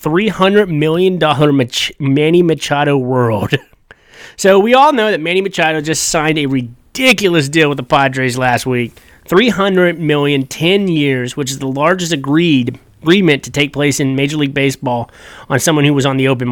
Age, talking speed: 30-49, 170 wpm